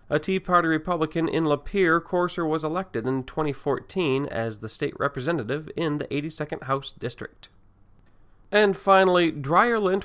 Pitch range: 130-175 Hz